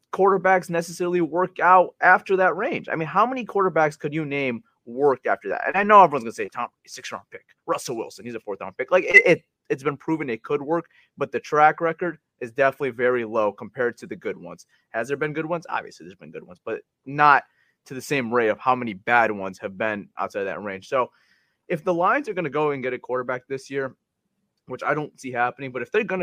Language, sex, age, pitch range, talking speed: English, male, 30-49, 130-175 Hz, 240 wpm